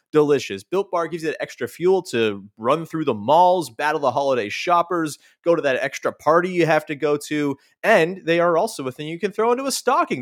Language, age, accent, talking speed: English, 30-49, American, 230 wpm